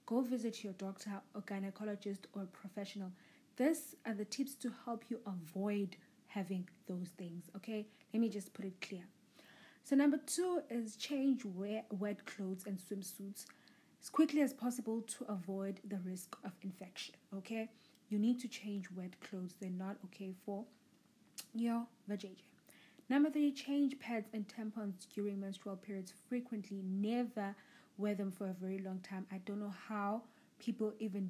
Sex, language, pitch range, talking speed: female, English, 195-230 Hz, 160 wpm